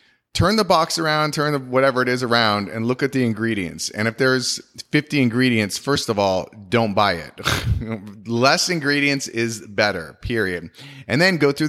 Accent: American